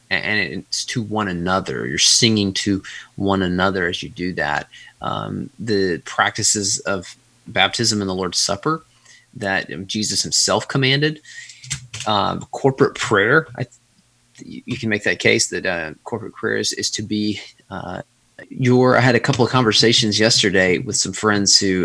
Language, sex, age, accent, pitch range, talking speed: English, male, 30-49, American, 95-120 Hz, 160 wpm